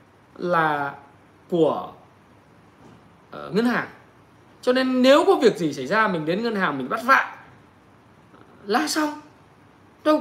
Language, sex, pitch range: Vietnamese, male, 160-225 Hz